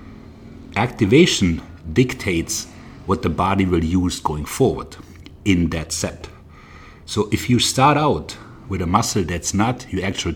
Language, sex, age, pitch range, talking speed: English, male, 60-79, 75-100 Hz, 140 wpm